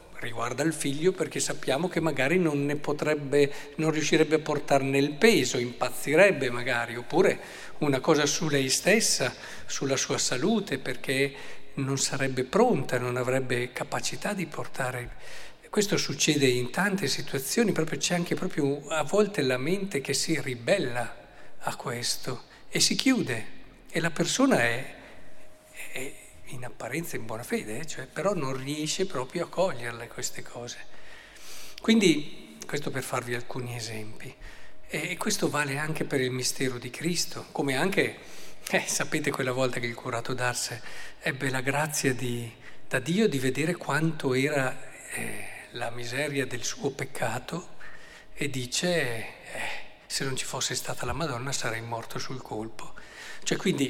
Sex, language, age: male, Italian, 50-69